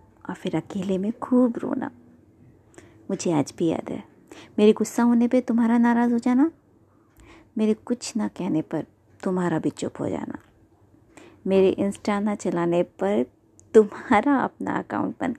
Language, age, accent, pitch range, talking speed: Hindi, 20-39, native, 175-225 Hz, 150 wpm